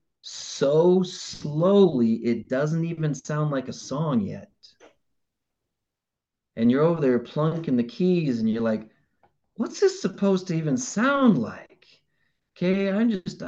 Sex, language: male, English